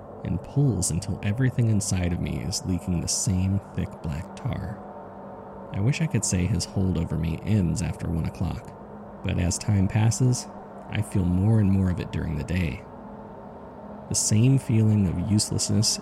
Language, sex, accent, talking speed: English, male, American, 170 wpm